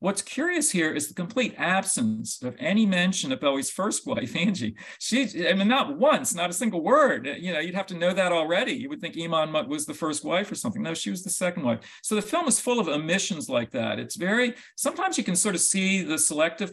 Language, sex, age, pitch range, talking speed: English, male, 50-69, 145-215 Hz, 240 wpm